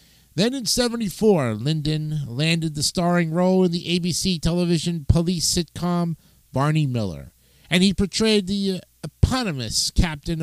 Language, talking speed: English, 125 wpm